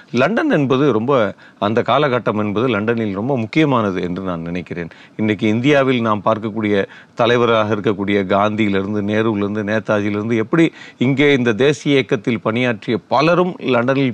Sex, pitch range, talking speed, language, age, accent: male, 110-155 Hz, 125 wpm, Tamil, 40-59, native